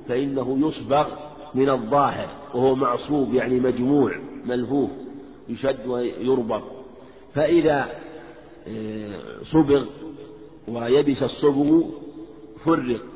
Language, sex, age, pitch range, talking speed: Arabic, male, 50-69, 130-145 Hz, 75 wpm